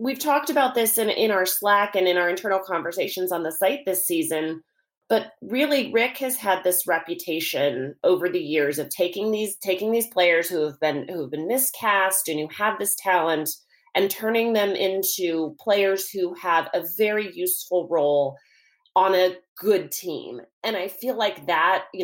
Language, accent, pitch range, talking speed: English, American, 155-195 Hz, 180 wpm